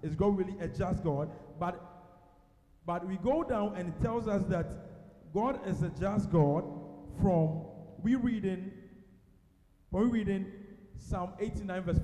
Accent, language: Nigerian, English